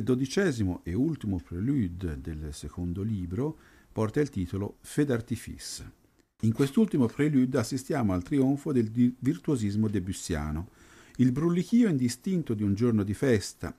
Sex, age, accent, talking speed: male, 50-69, native, 130 wpm